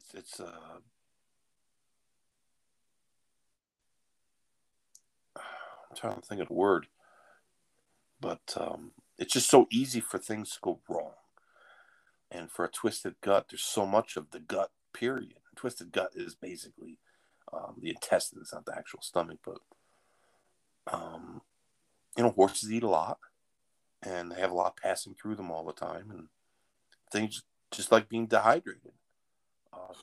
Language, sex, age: English, male, 50-69